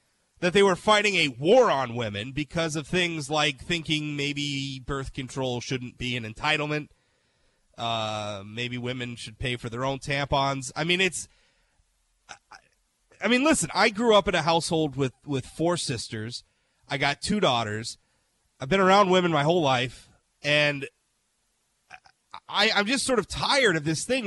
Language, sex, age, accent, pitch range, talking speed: English, male, 30-49, American, 135-180 Hz, 165 wpm